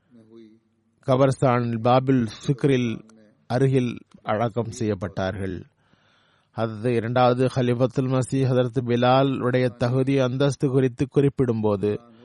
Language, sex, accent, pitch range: Tamil, male, native, 115-135 Hz